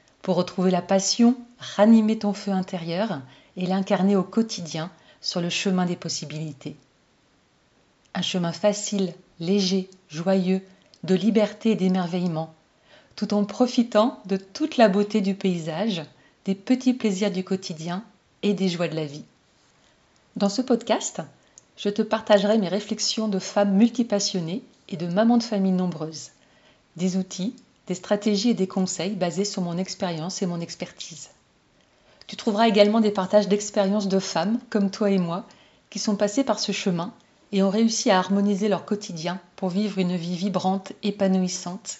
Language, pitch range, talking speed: French, 185-215 Hz, 155 wpm